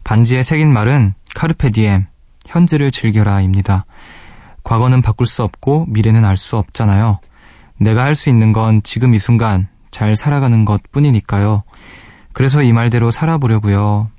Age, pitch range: 20-39, 95-125 Hz